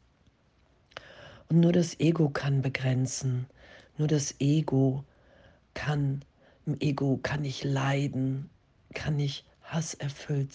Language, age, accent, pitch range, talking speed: German, 50-69, German, 135-155 Hz, 100 wpm